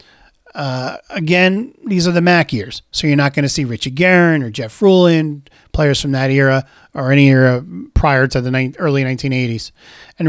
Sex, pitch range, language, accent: male, 125-155 Hz, English, American